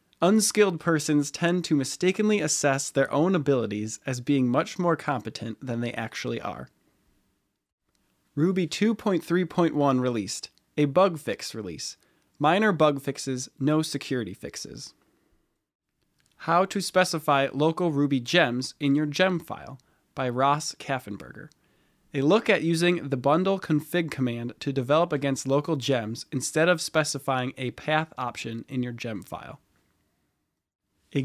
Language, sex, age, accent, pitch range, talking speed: English, male, 20-39, American, 130-165 Hz, 130 wpm